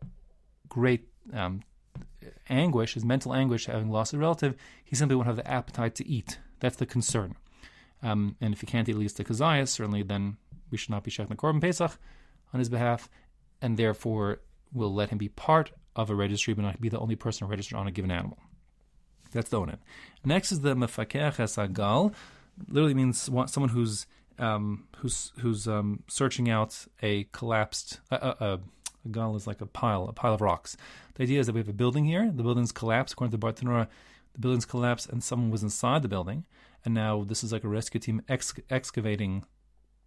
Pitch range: 105-130 Hz